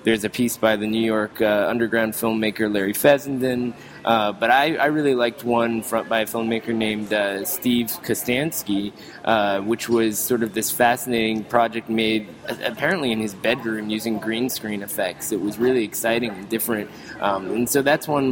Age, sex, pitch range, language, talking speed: 20-39, male, 110-120 Hz, English, 180 wpm